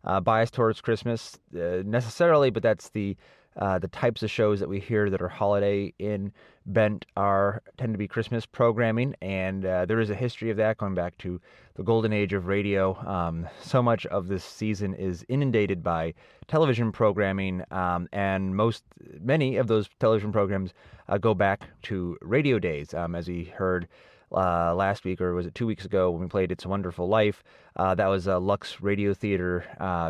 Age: 30-49